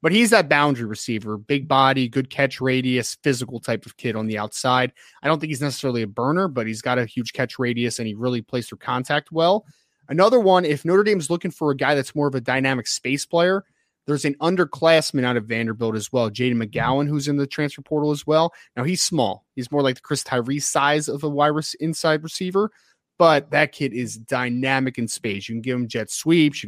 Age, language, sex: 30-49, English, male